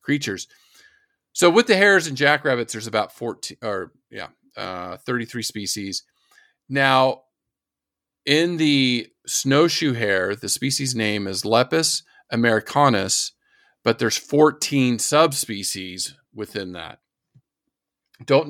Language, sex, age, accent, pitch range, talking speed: English, male, 40-59, American, 105-135 Hz, 105 wpm